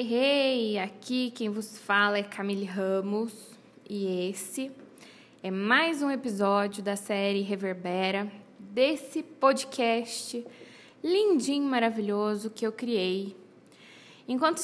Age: 20-39